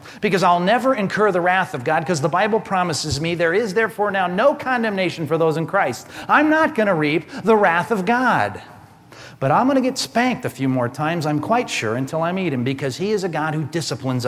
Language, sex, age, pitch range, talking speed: English, male, 40-59, 150-215 Hz, 235 wpm